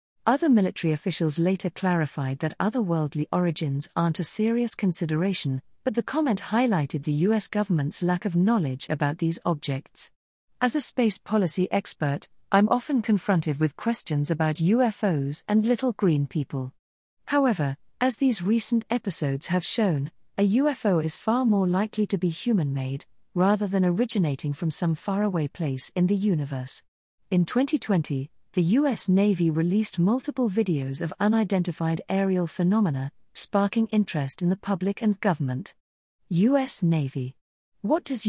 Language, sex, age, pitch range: English, female, 40-59, 155-215 Hz